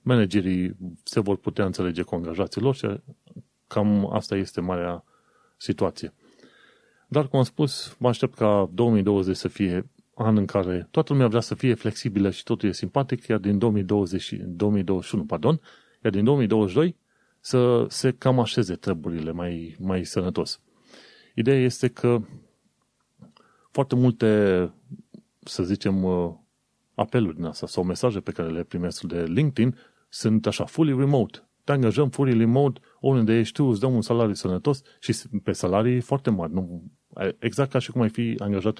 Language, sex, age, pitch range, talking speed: Romanian, male, 30-49, 95-125 Hz, 150 wpm